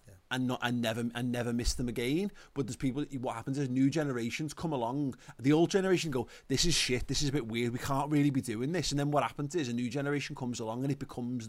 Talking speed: 260 wpm